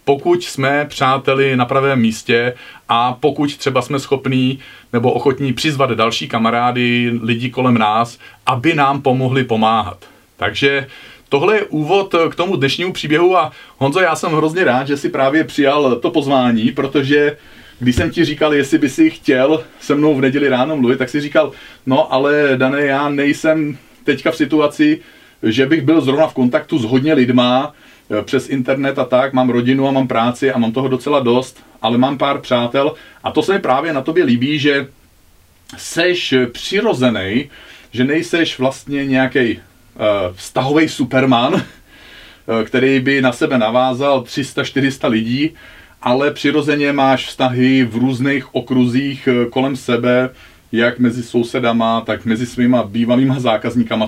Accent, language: native, Czech